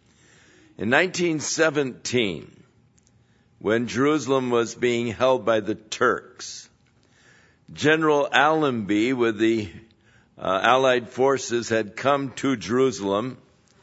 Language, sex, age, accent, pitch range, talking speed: English, male, 60-79, American, 115-135 Hz, 90 wpm